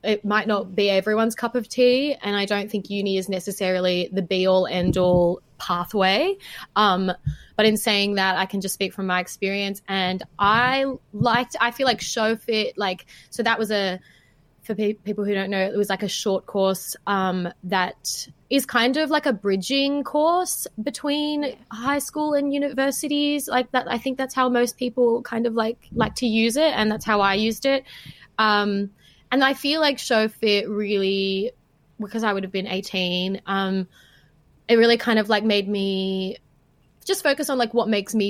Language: English